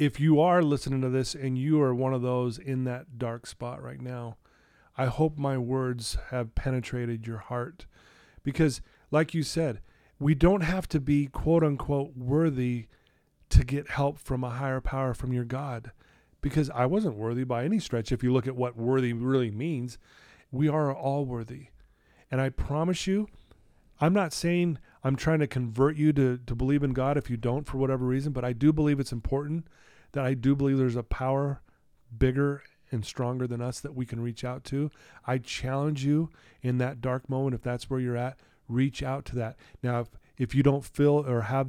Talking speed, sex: 200 wpm, male